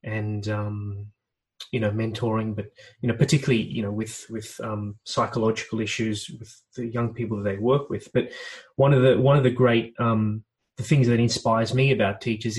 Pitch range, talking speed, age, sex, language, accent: 115-135 Hz, 190 wpm, 20-39, male, English, Australian